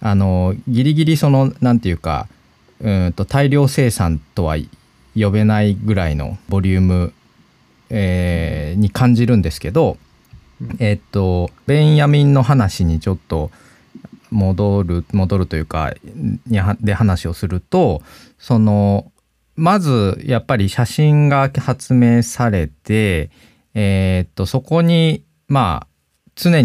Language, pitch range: Japanese, 85-120 Hz